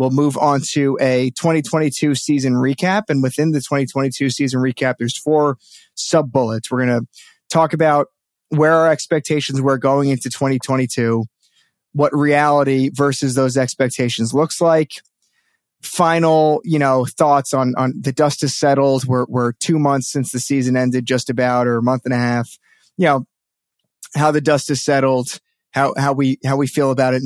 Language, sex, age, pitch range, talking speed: English, male, 20-39, 125-145 Hz, 170 wpm